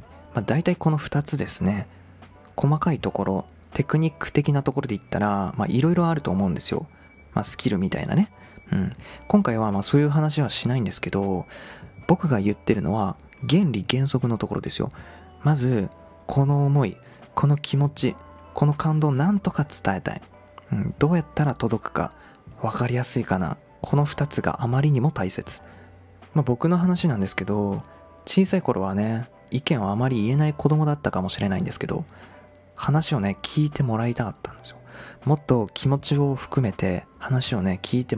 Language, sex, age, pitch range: Japanese, male, 20-39, 100-150 Hz